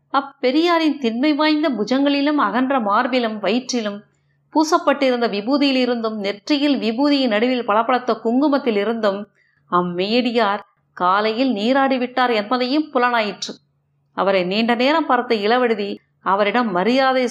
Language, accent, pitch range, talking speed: Tamil, native, 195-255 Hz, 95 wpm